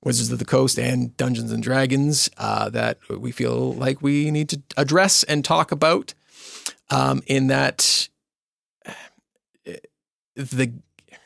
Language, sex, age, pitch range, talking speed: English, male, 40-59, 115-150 Hz, 130 wpm